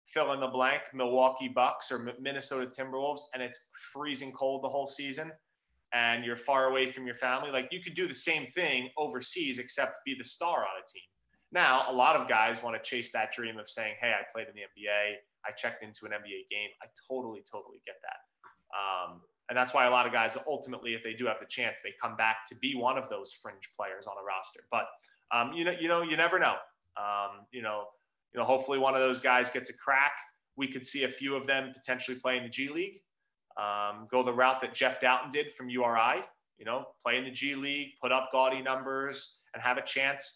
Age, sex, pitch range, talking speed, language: 20-39, male, 120-140 Hz, 230 wpm, English